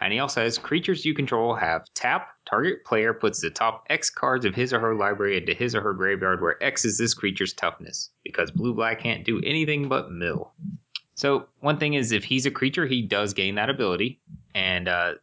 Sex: male